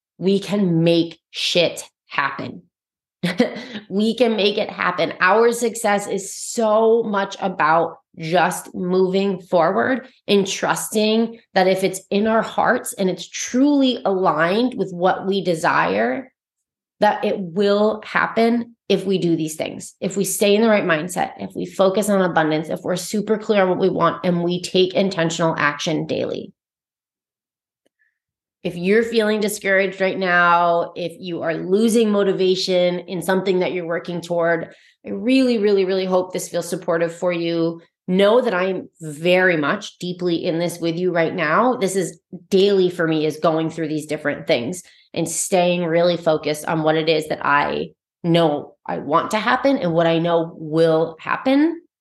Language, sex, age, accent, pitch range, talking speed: English, female, 30-49, American, 170-210 Hz, 165 wpm